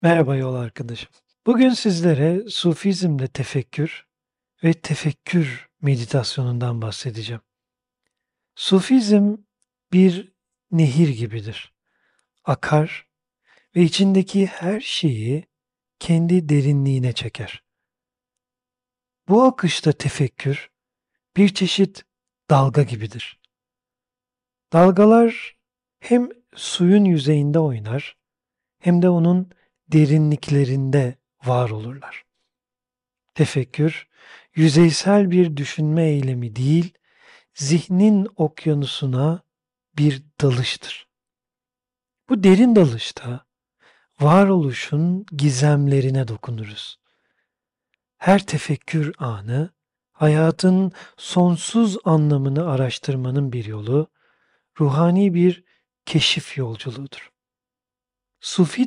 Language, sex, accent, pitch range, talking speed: Turkish, male, native, 135-180 Hz, 70 wpm